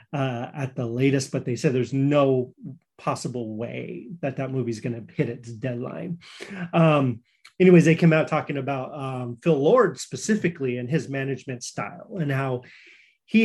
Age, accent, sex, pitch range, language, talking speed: 30-49, American, male, 125-155 Hz, English, 170 wpm